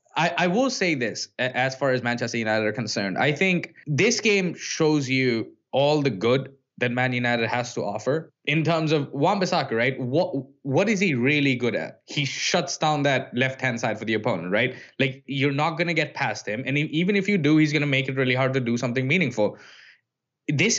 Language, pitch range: English, 130-165 Hz